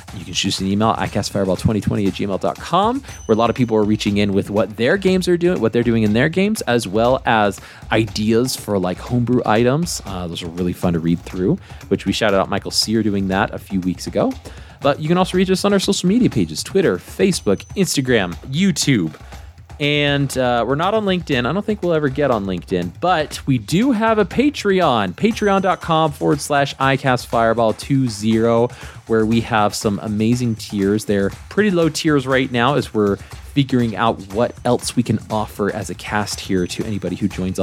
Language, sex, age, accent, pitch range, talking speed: English, male, 20-39, American, 100-140 Hz, 200 wpm